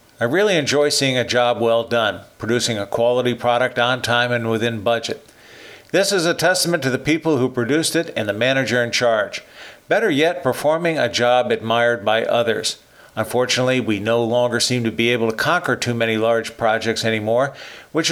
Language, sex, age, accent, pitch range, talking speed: English, male, 50-69, American, 115-135 Hz, 185 wpm